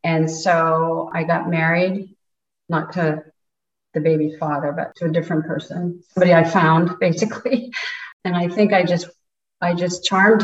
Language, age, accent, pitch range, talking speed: English, 40-59, American, 165-205 Hz, 155 wpm